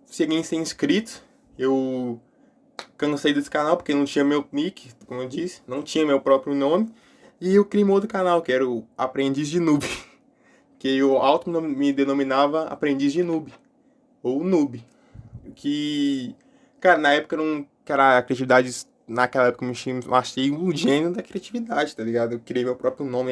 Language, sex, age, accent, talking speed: Portuguese, male, 20-39, Brazilian, 170 wpm